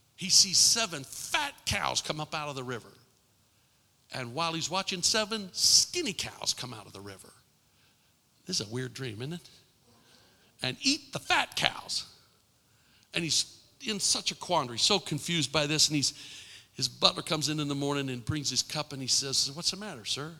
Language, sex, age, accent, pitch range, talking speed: English, male, 50-69, American, 115-150 Hz, 190 wpm